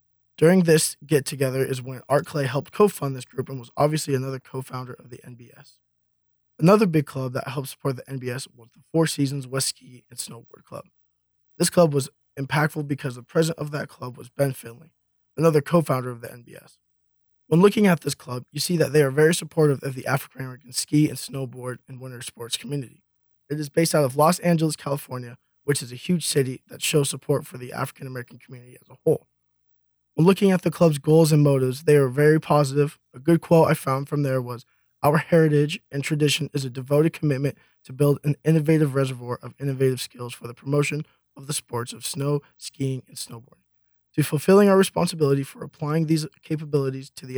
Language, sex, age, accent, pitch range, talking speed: English, male, 20-39, American, 125-155 Hz, 200 wpm